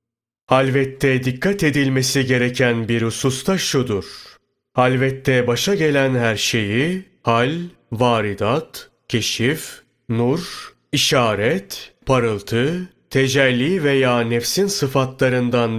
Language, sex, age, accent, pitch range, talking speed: Turkish, male, 30-49, native, 115-145 Hz, 85 wpm